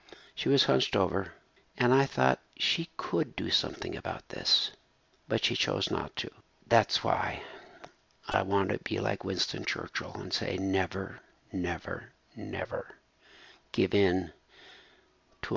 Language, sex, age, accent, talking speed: English, male, 60-79, American, 135 wpm